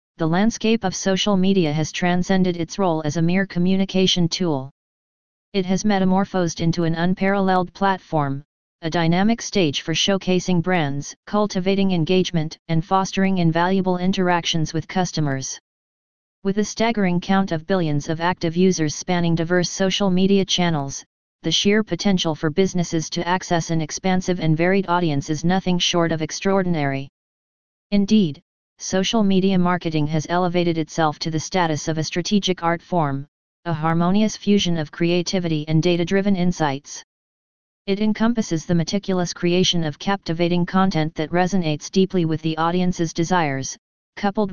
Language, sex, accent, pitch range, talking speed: English, female, American, 165-190 Hz, 140 wpm